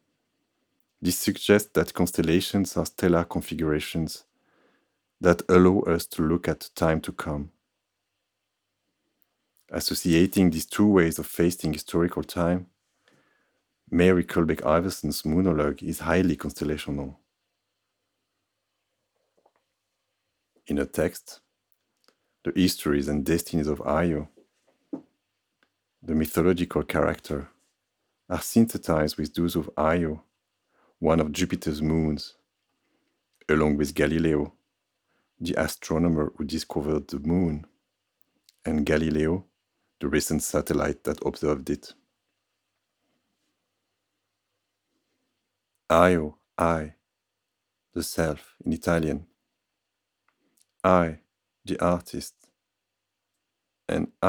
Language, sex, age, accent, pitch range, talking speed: Danish, male, 40-59, French, 75-95 Hz, 90 wpm